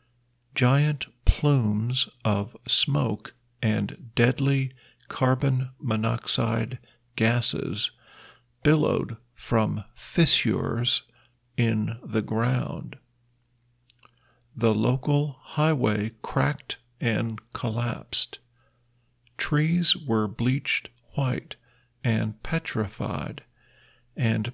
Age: 50-69